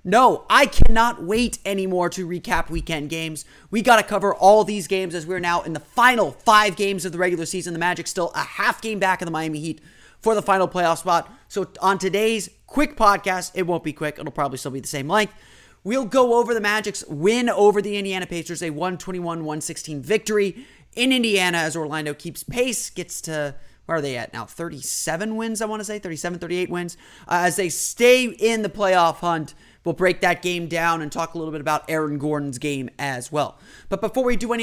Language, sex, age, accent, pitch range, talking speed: English, male, 30-49, American, 160-210 Hz, 215 wpm